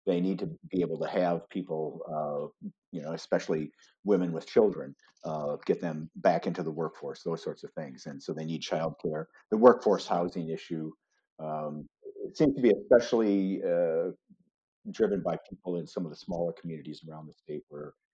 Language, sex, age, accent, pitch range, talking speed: English, male, 50-69, American, 80-105 Hz, 180 wpm